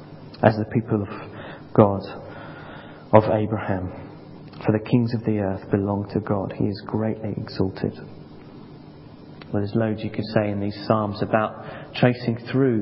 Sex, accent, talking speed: male, British, 150 wpm